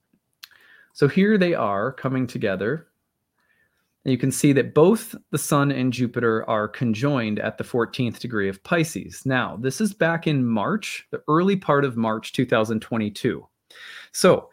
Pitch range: 115-145 Hz